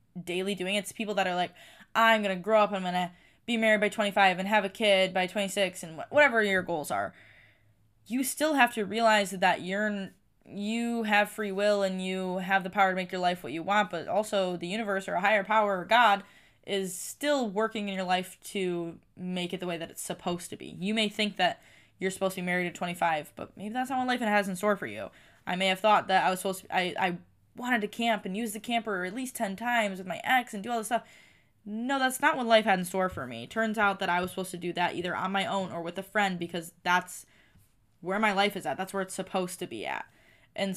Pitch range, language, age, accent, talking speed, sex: 175-210 Hz, English, 10-29, American, 260 wpm, female